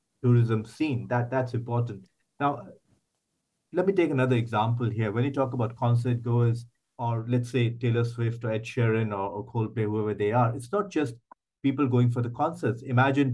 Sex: male